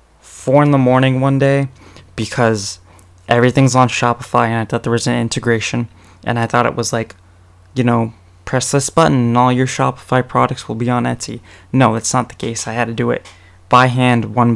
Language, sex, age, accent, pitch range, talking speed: English, male, 20-39, American, 90-120 Hz, 205 wpm